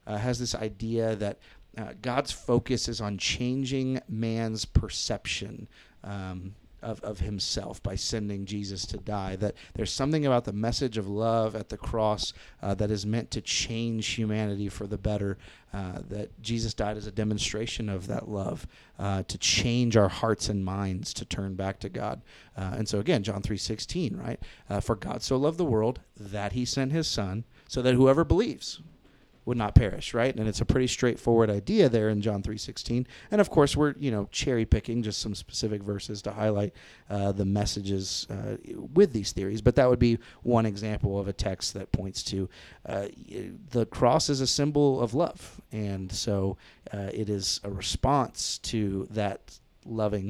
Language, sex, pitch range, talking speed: English, male, 100-120 Hz, 185 wpm